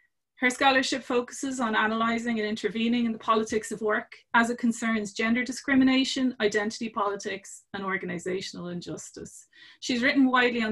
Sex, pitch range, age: female, 200-250 Hz, 30-49